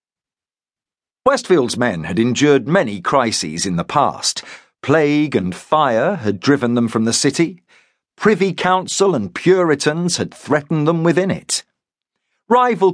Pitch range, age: 120-185 Hz, 50-69